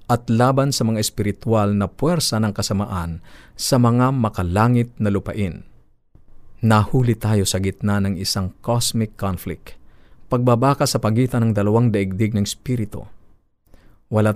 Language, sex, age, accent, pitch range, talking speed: Filipino, male, 50-69, native, 100-120 Hz, 130 wpm